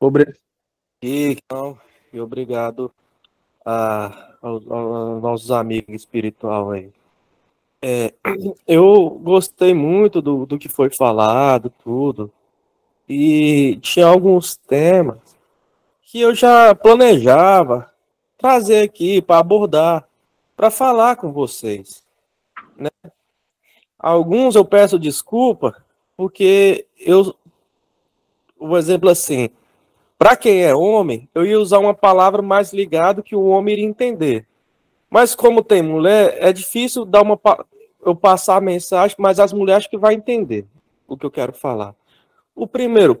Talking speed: 125 wpm